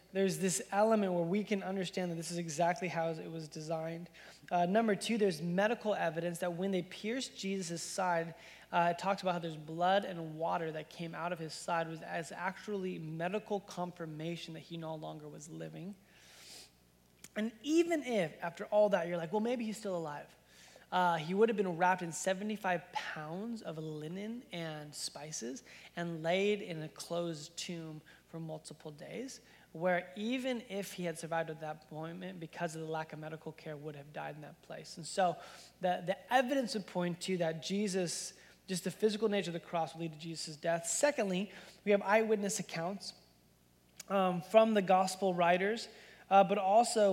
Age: 20-39